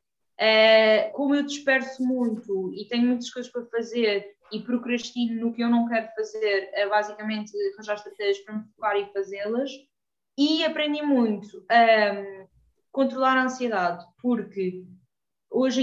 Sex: female